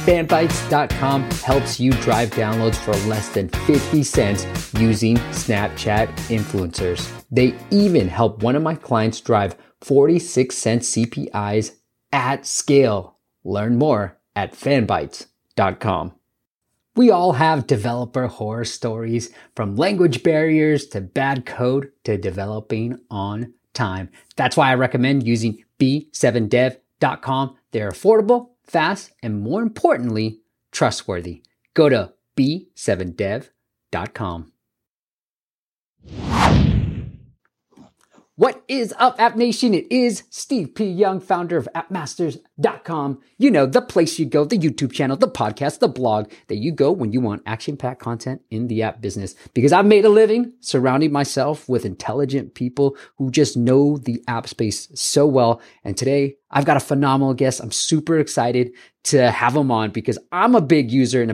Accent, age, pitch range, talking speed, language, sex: American, 30-49, 115-150 Hz, 135 wpm, English, male